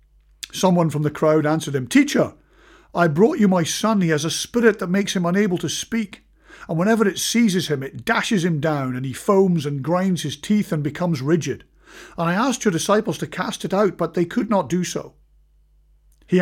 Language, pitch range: English, 125-190 Hz